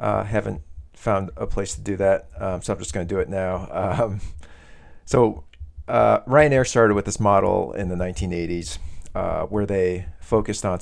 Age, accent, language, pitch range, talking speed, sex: 40-59, American, English, 85-105 Hz, 185 wpm, male